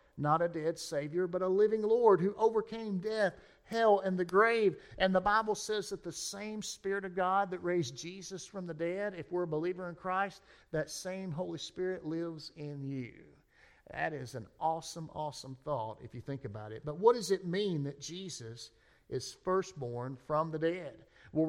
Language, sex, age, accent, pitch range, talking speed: English, male, 50-69, American, 155-195 Hz, 190 wpm